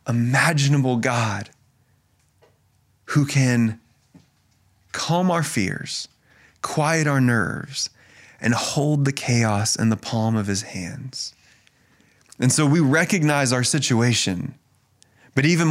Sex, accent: male, American